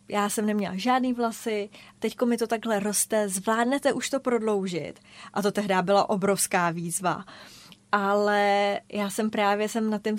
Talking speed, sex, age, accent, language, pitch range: 160 wpm, female, 20-39, native, Czech, 190-210 Hz